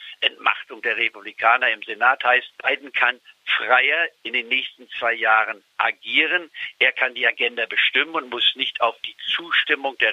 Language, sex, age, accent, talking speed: German, male, 60-79, German, 160 wpm